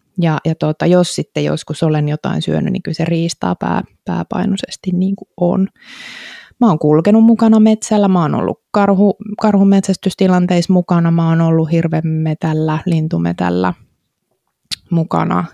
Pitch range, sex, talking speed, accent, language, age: 160-195 Hz, female, 130 wpm, native, Finnish, 20-39